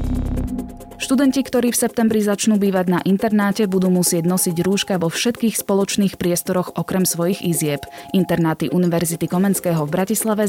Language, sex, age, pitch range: Slovak, female, 20-39, 165-205 Hz